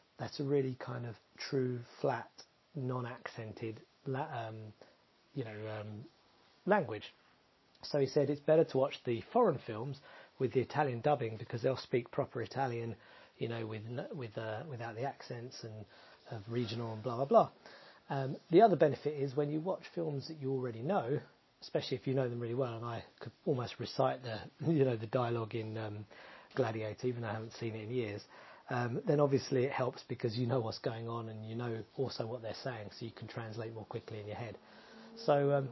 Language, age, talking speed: English, 30-49, 195 wpm